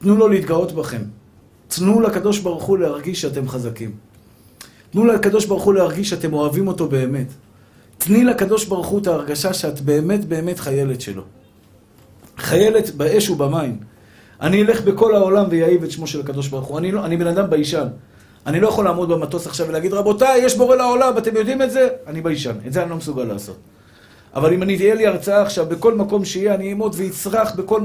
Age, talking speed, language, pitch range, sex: 50-69, 185 wpm, Hebrew, 150-225 Hz, male